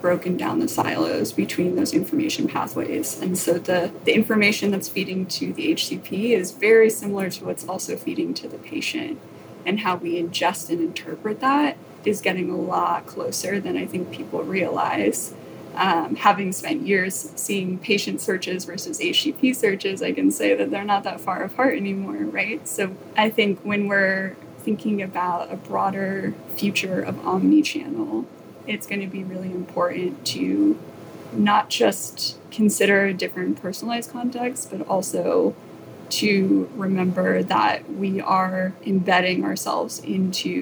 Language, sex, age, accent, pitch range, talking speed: English, female, 20-39, American, 185-235 Hz, 150 wpm